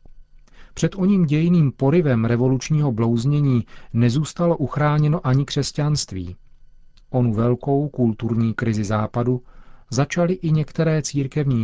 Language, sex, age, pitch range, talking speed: Czech, male, 40-59, 115-135 Hz, 100 wpm